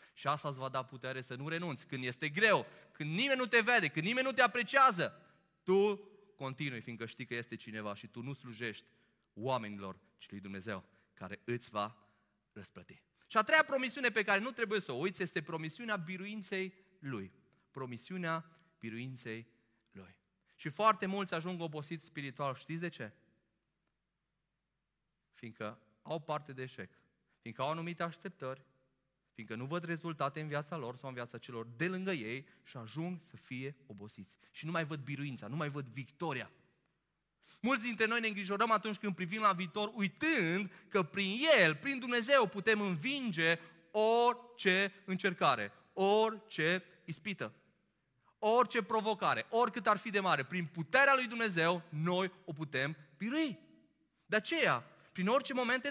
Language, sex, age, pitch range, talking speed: Romanian, male, 30-49, 130-205 Hz, 155 wpm